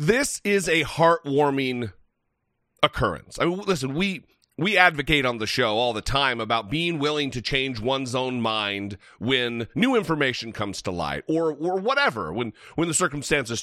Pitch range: 120-165 Hz